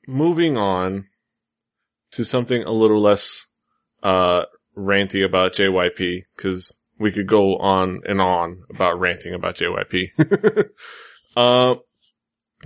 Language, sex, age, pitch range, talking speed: English, male, 20-39, 95-115 Hz, 110 wpm